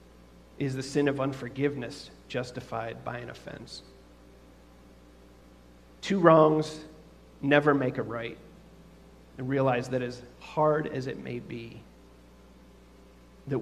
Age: 40-59